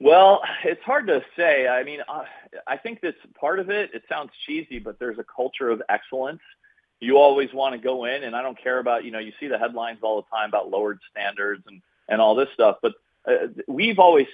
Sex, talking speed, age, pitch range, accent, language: male, 225 wpm, 40-59, 115-160 Hz, American, English